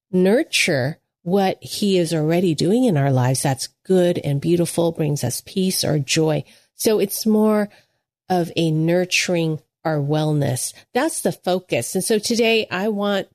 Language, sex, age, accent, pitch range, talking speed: English, female, 40-59, American, 160-215 Hz, 155 wpm